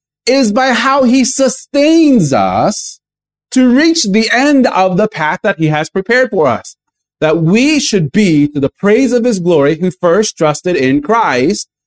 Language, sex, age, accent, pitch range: Japanese, male, 40-59, American, 175-260 Hz